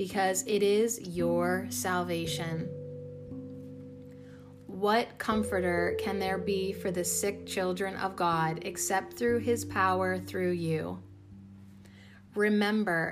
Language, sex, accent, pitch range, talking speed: English, female, American, 145-205 Hz, 105 wpm